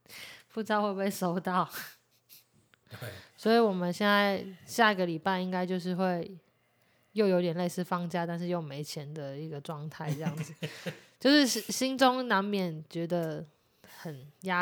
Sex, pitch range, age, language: female, 165-200 Hz, 20-39, Chinese